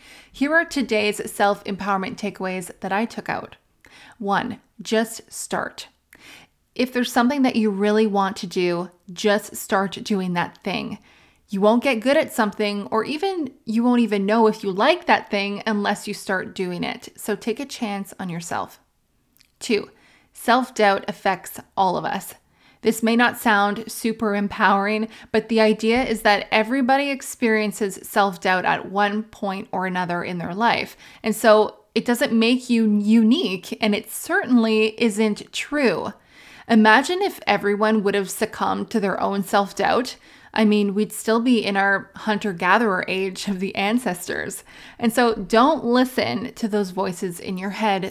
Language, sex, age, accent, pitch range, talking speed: English, female, 20-39, American, 200-230 Hz, 160 wpm